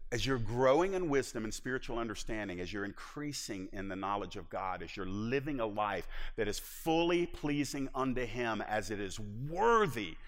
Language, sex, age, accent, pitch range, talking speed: English, male, 50-69, American, 115-150 Hz, 180 wpm